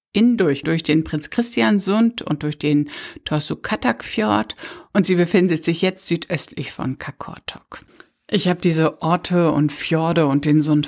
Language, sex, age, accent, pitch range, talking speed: German, female, 60-79, German, 145-170 Hz, 145 wpm